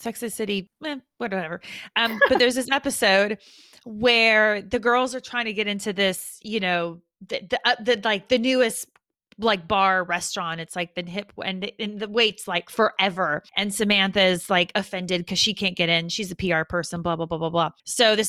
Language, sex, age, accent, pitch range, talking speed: English, female, 30-49, American, 185-235 Hz, 195 wpm